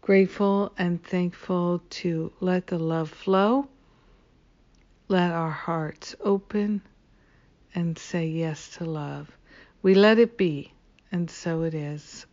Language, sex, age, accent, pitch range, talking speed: English, female, 60-79, American, 160-195 Hz, 120 wpm